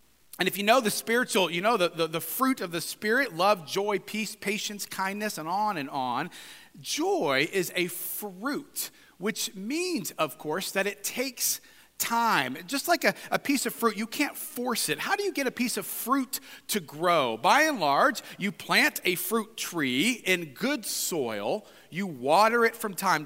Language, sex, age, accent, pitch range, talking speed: English, male, 40-59, American, 170-235 Hz, 190 wpm